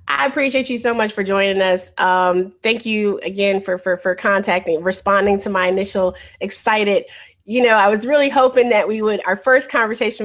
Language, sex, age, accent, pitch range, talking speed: English, female, 20-39, American, 180-230 Hz, 195 wpm